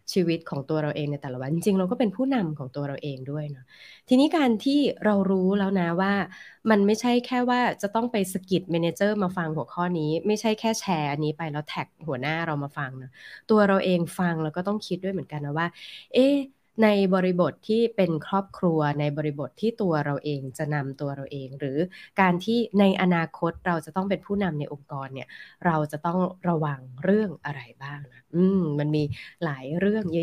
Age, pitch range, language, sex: 20-39, 150-200 Hz, Thai, female